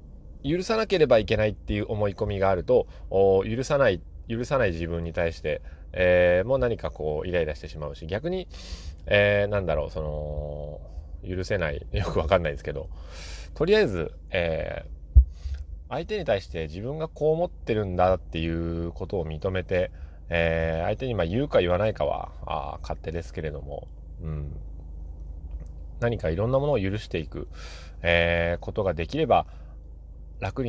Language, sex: Japanese, male